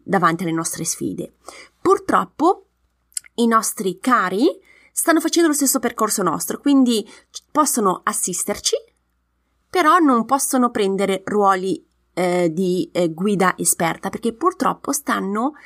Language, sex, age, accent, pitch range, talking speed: Italian, female, 20-39, native, 185-270 Hz, 115 wpm